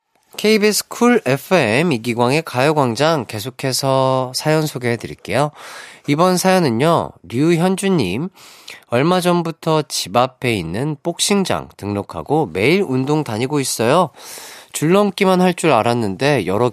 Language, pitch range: Korean, 100-165 Hz